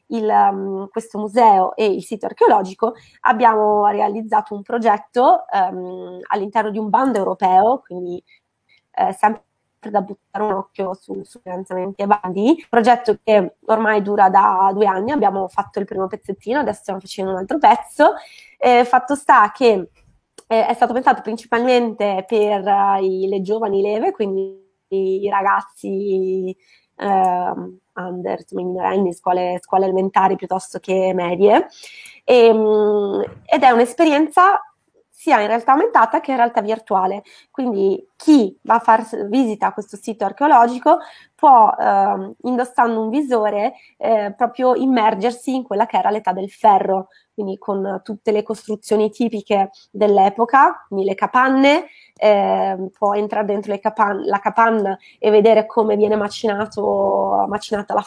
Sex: female